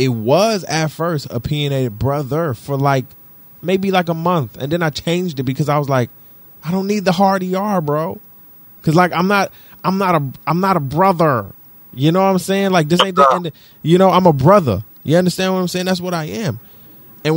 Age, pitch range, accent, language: 20-39, 130-185 Hz, American, English